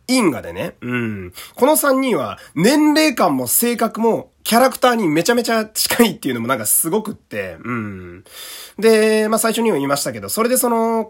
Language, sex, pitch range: Japanese, male, 140-235 Hz